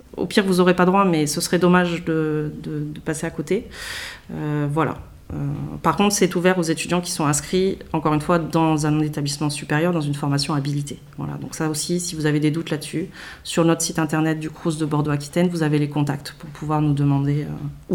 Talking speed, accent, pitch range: 220 wpm, French, 145-170 Hz